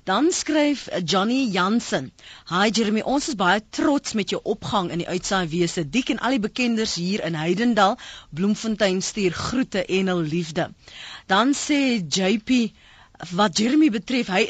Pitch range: 180-255 Hz